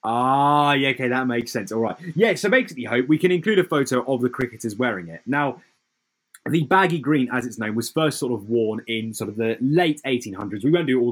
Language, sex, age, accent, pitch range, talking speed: English, male, 20-39, British, 115-160 Hz, 245 wpm